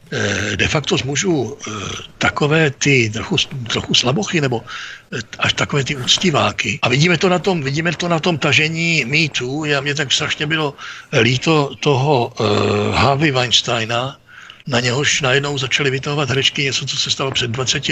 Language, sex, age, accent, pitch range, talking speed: Czech, male, 60-79, native, 120-145 Hz, 155 wpm